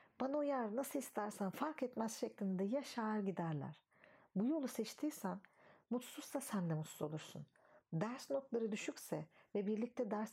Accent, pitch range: native, 190-245 Hz